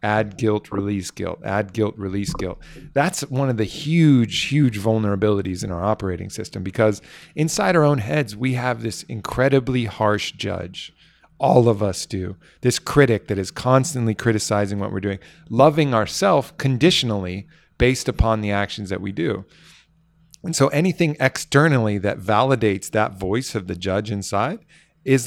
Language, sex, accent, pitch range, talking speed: English, male, American, 105-135 Hz, 155 wpm